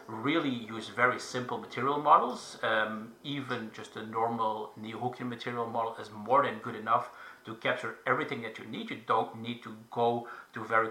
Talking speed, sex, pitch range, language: 180 wpm, male, 110-125 Hz, English